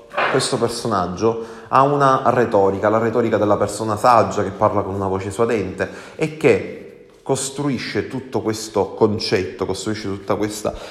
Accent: native